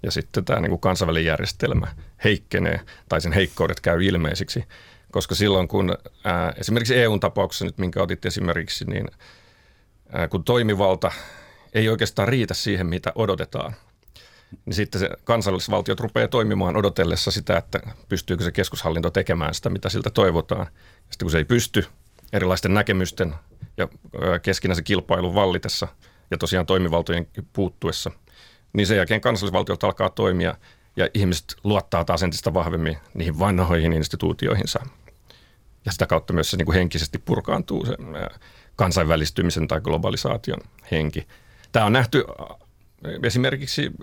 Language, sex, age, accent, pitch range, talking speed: Finnish, male, 40-59, native, 85-105 Hz, 130 wpm